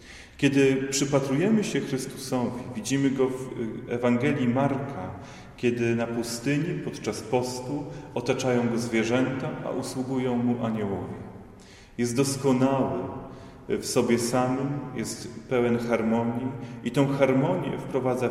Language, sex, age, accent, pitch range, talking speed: Polish, male, 30-49, native, 115-140 Hz, 110 wpm